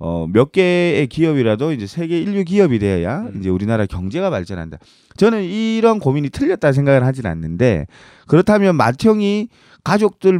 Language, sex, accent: Korean, male, native